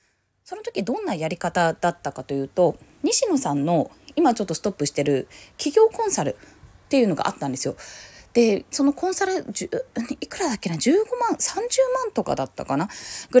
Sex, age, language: female, 20-39, Japanese